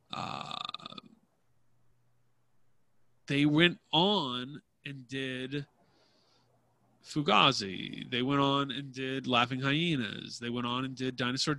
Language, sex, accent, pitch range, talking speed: English, male, American, 130-175 Hz, 105 wpm